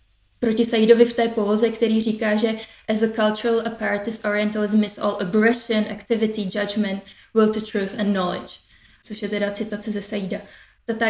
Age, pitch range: 20-39, 210-230 Hz